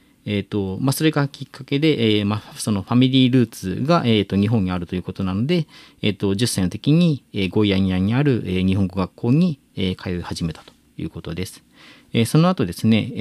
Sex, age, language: male, 40-59, Japanese